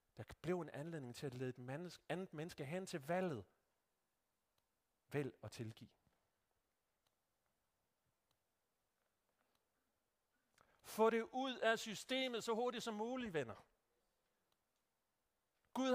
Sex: male